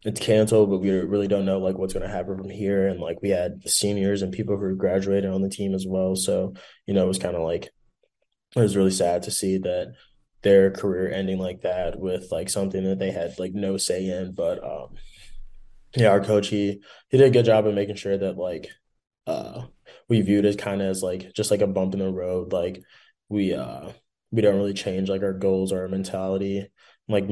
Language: English